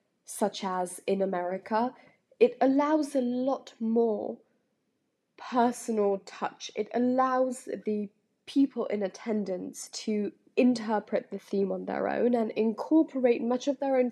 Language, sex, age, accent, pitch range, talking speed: English, female, 10-29, British, 195-250 Hz, 130 wpm